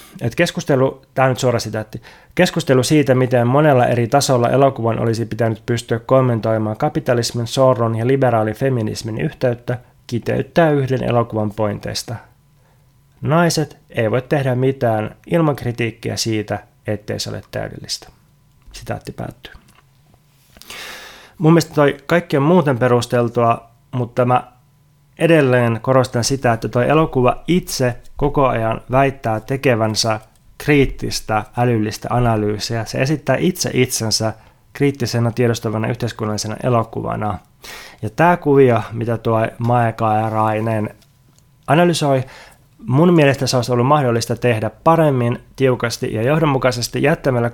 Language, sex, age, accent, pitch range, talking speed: Finnish, male, 20-39, native, 115-135 Hz, 115 wpm